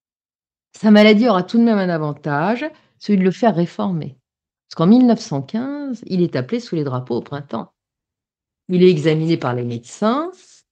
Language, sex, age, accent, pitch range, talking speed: French, female, 40-59, French, 145-205 Hz, 170 wpm